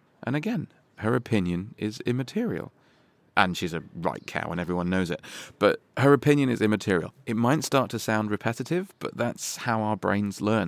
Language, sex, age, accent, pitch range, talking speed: English, male, 30-49, British, 95-120 Hz, 180 wpm